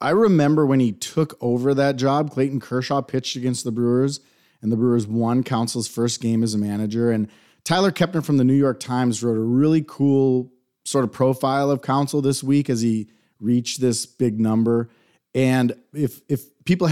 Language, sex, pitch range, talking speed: English, male, 115-140 Hz, 190 wpm